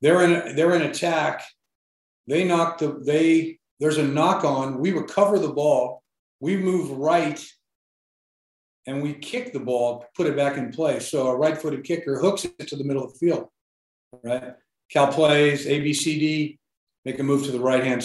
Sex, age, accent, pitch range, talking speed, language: male, 40-59, American, 125-150 Hz, 175 wpm, English